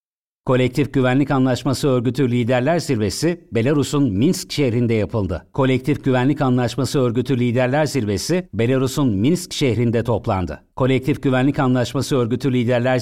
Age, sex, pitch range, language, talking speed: 60-79, male, 120-145 Hz, Turkish, 115 wpm